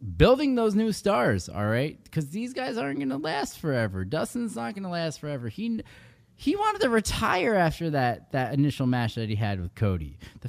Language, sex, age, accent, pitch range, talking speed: English, male, 20-39, American, 110-160 Hz, 205 wpm